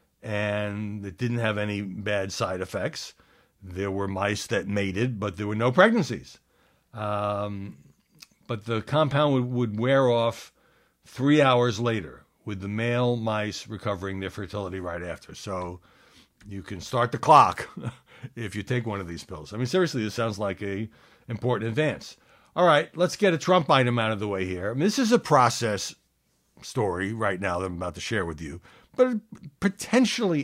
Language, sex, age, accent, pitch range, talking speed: English, male, 60-79, American, 95-130 Hz, 175 wpm